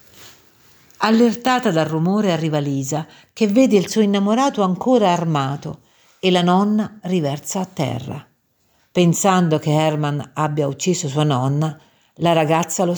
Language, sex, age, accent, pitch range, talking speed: Italian, female, 50-69, native, 150-200 Hz, 130 wpm